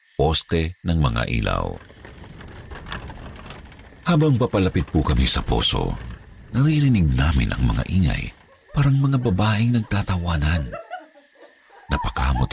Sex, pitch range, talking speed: male, 80-115 Hz, 95 wpm